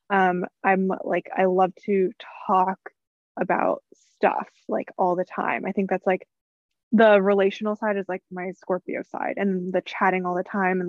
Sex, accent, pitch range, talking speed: female, American, 185-210 Hz, 175 wpm